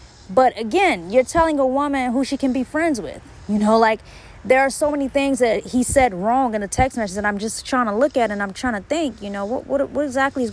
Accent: American